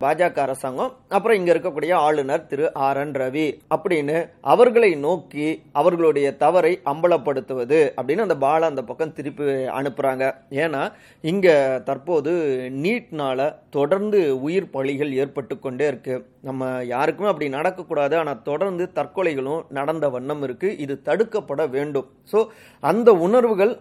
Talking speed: 85 wpm